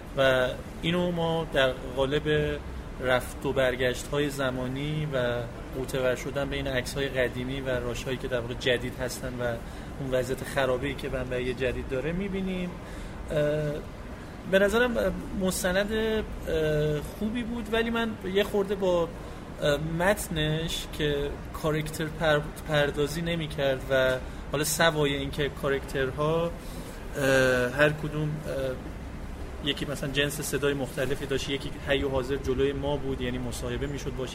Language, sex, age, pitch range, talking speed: Persian, male, 30-49, 130-155 Hz, 130 wpm